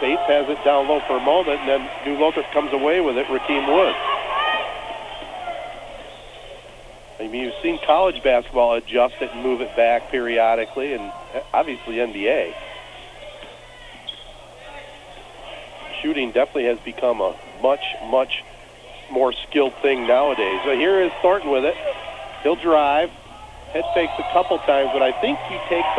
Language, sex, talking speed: English, male, 145 wpm